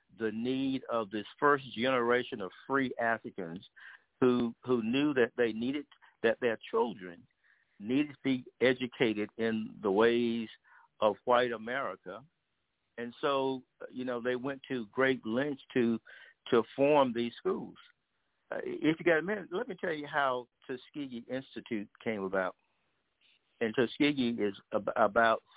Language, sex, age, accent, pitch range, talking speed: English, male, 60-79, American, 115-135 Hz, 140 wpm